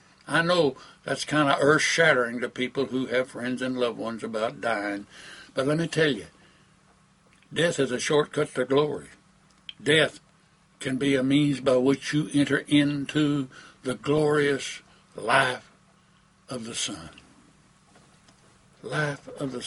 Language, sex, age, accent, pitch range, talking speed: English, male, 60-79, American, 125-155 Hz, 140 wpm